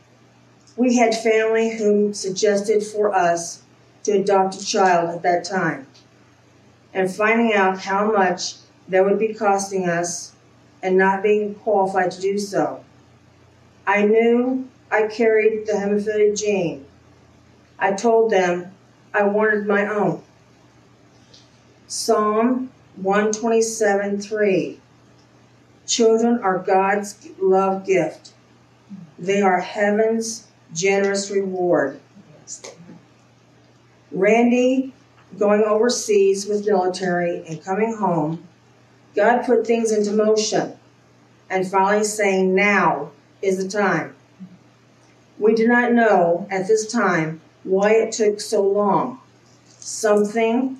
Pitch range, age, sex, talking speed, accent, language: 180-215 Hz, 40-59, female, 105 wpm, American, English